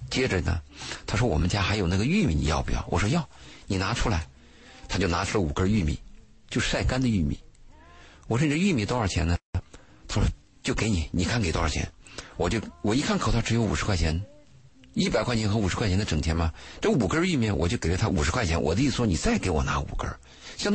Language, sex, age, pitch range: Chinese, male, 50-69, 80-120 Hz